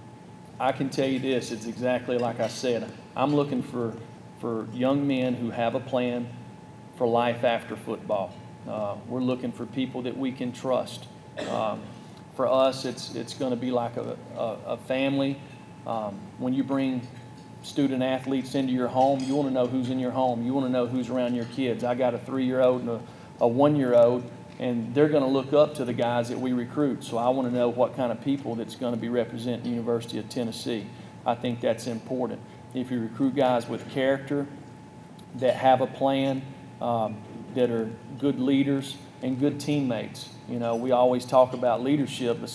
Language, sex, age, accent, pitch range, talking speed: English, male, 40-59, American, 120-130 Hz, 195 wpm